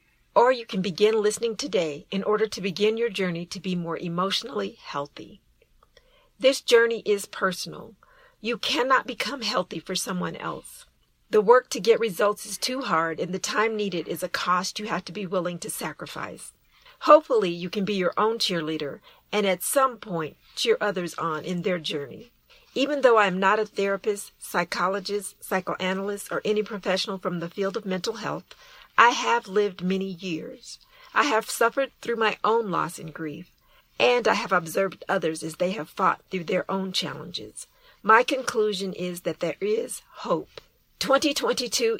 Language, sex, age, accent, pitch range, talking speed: English, female, 50-69, American, 180-235 Hz, 170 wpm